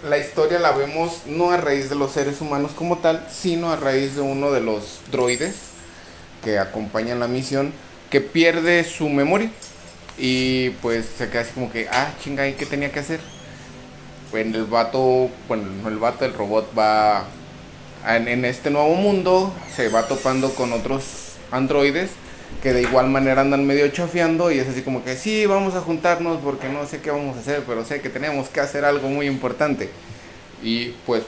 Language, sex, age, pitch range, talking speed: Spanish, male, 30-49, 110-145 Hz, 190 wpm